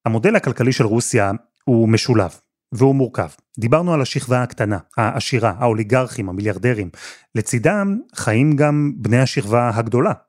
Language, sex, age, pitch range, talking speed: Hebrew, male, 30-49, 110-135 Hz, 120 wpm